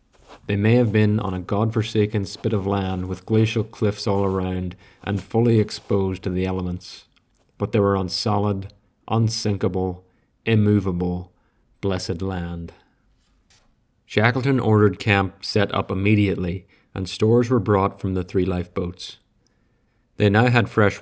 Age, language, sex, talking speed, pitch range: 30-49, English, male, 135 wpm, 95-110 Hz